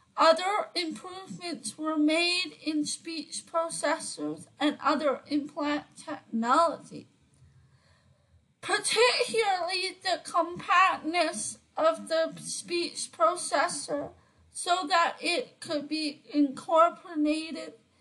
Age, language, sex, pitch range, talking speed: 30-49, English, female, 295-345 Hz, 80 wpm